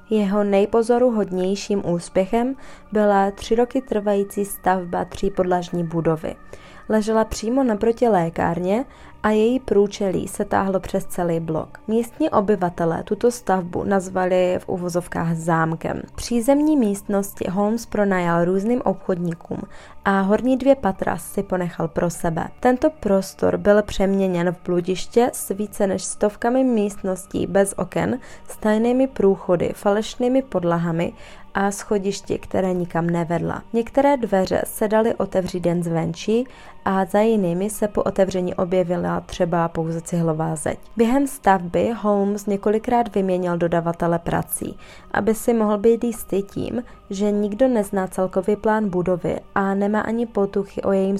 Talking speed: 130 wpm